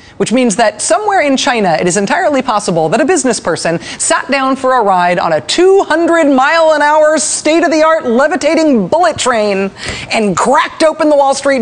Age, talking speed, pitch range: 30-49, 195 wpm, 195-275 Hz